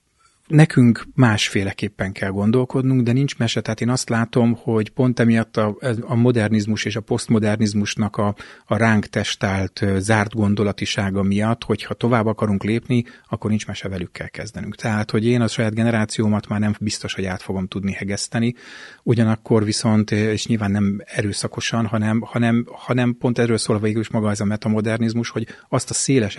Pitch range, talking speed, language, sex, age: 100-115 Hz, 160 wpm, Hungarian, male, 30-49